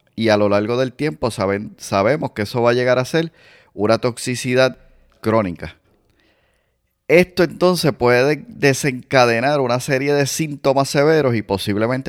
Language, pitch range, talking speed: Spanish, 105-140 Hz, 140 wpm